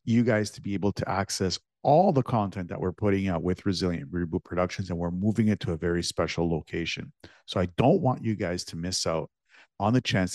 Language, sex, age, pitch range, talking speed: English, male, 50-69, 90-120 Hz, 225 wpm